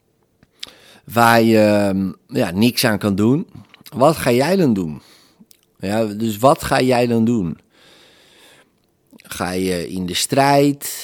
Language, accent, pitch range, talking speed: Dutch, Dutch, 100-125 Hz, 120 wpm